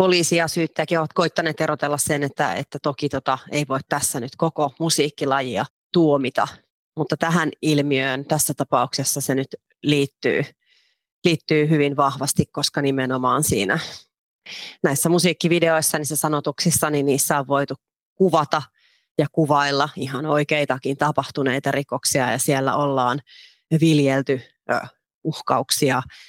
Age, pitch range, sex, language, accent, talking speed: 30-49, 135-155 Hz, female, Finnish, native, 120 wpm